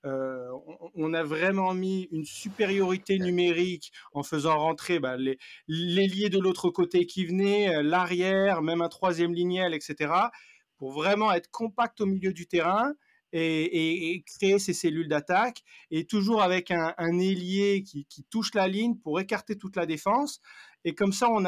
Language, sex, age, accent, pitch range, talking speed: French, male, 40-59, French, 160-195 Hz, 160 wpm